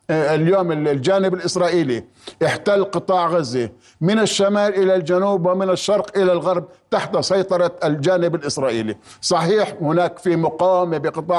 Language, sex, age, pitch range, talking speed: Arabic, male, 50-69, 165-195 Hz, 120 wpm